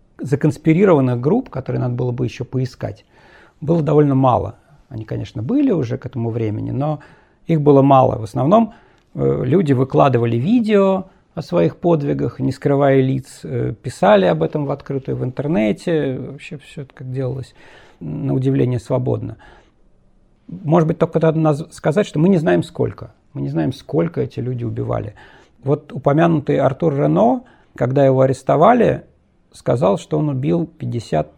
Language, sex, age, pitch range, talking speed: Russian, male, 40-59, 125-160 Hz, 145 wpm